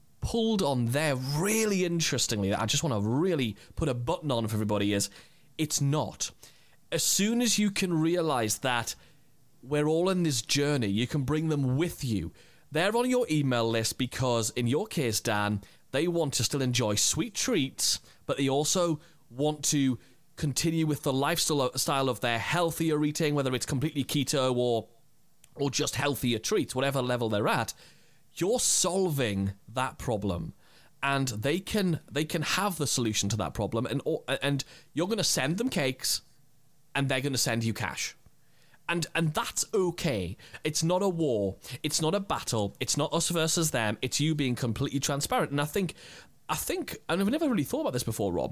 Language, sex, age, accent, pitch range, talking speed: English, male, 30-49, British, 120-160 Hz, 180 wpm